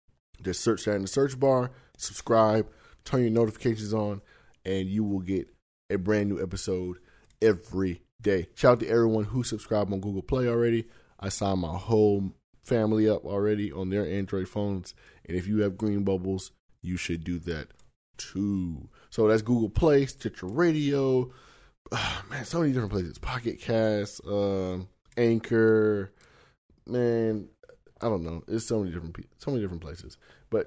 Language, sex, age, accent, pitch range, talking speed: English, male, 20-39, American, 95-115 Hz, 160 wpm